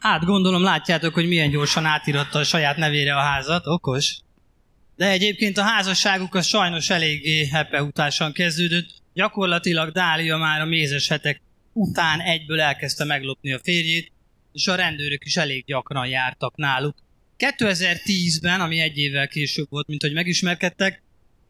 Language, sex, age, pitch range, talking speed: Hungarian, male, 20-39, 145-185 Hz, 140 wpm